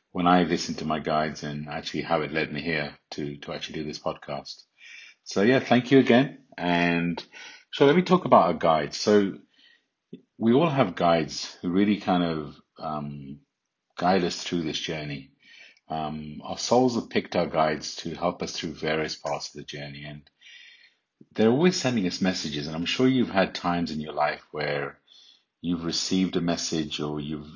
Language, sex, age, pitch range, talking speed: English, male, 50-69, 75-95 Hz, 185 wpm